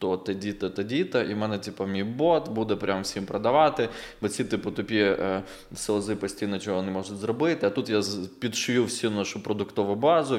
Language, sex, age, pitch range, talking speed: Ukrainian, male, 20-39, 100-115 Hz, 195 wpm